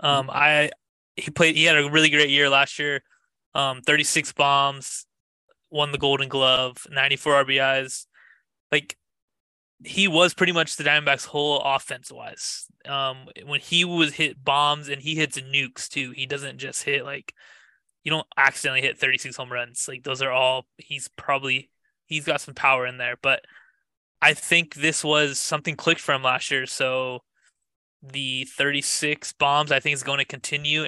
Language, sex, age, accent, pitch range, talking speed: English, male, 20-39, American, 135-155 Hz, 165 wpm